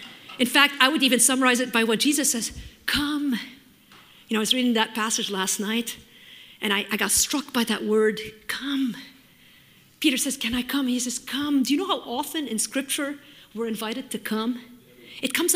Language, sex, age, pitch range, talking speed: English, female, 50-69, 270-430 Hz, 195 wpm